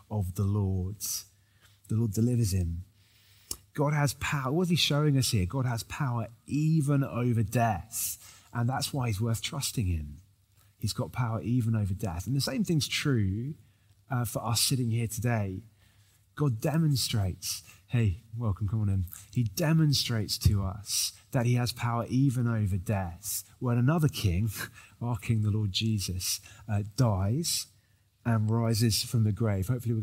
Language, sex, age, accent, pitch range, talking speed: English, male, 30-49, British, 100-120 Hz, 160 wpm